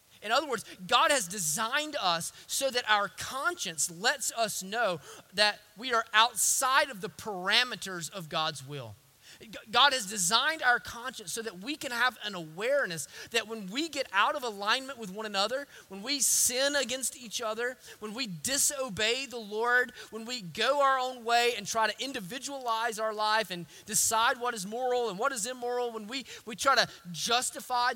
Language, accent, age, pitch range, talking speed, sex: English, American, 30-49, 185-250 Hz, 180 wpm, male